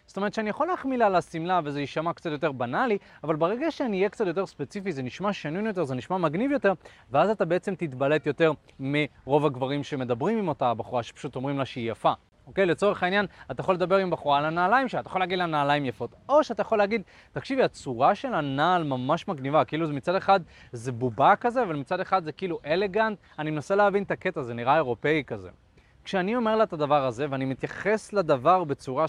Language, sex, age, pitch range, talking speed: Hebrew, male, 30-49, 130-190 Hz, 205 wpm